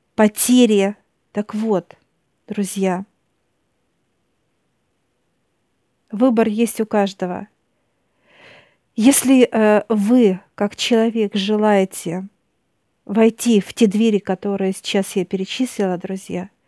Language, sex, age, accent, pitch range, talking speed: Russian, female, 50-69, native, 195-230 Hz, 85 wpm